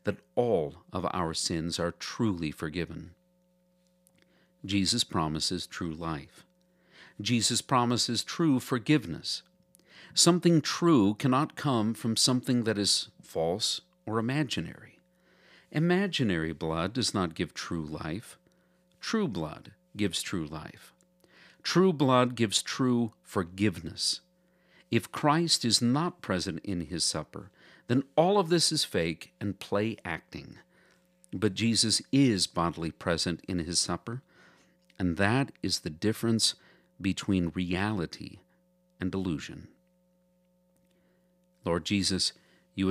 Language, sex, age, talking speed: English, male, 50-69, 110 wpm